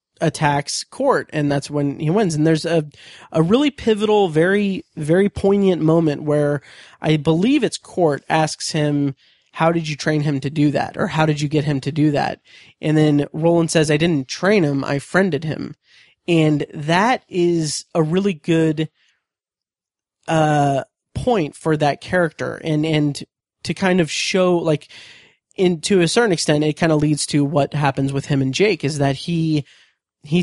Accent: American